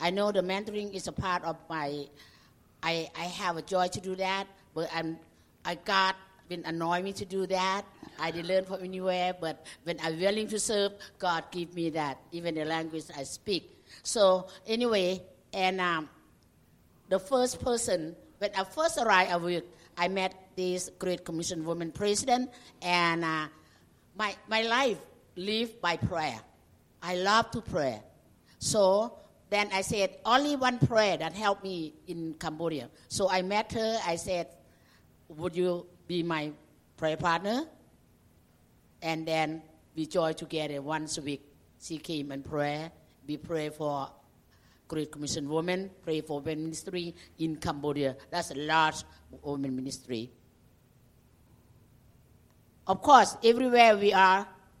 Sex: female